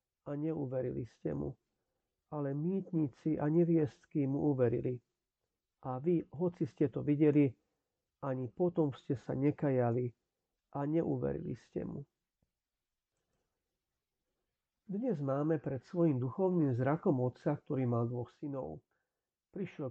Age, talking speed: 50-69, 110 wpm